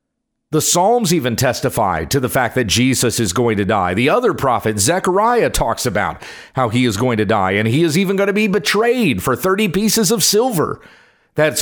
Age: 50-69